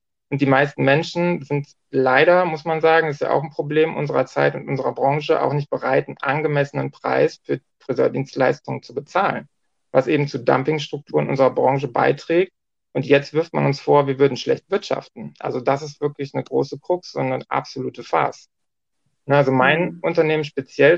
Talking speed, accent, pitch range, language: 180 wpm, German, 135-170 Hz, German